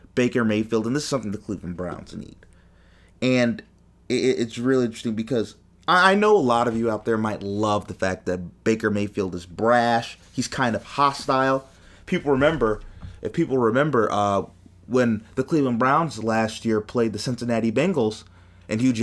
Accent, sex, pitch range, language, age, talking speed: American, male, 100-160 Hz, English, 30-49, 170 wpm